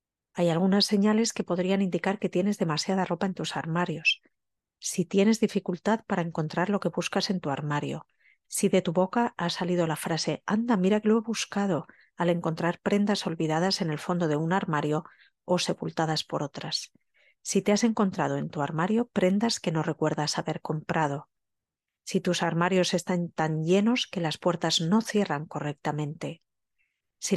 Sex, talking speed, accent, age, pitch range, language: female, 170 wpm, Spanish, 40-59, 160-195 Hz, Spanish